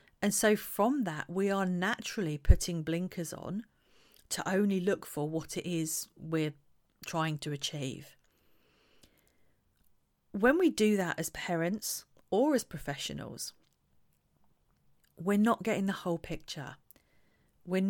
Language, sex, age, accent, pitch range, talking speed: English, female, 40-59, British, 160-220 Hz, 125 wpm